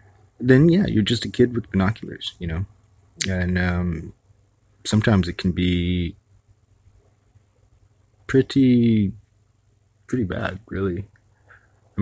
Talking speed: 105 wpm